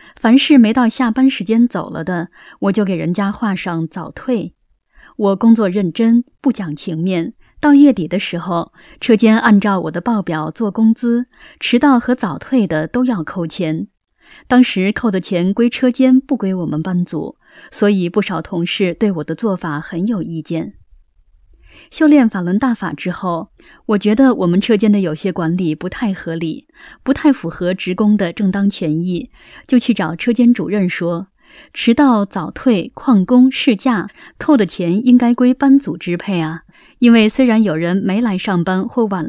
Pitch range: 175-245 Hz